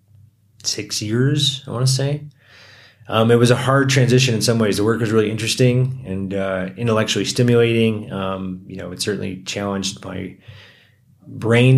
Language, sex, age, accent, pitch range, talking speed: English, male, 30-49, American, 95-115 Hz, 165 wpm